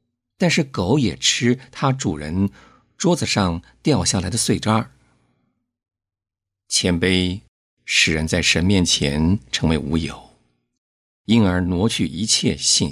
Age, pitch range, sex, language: 50-69, 75-115 Hz, male, Chinese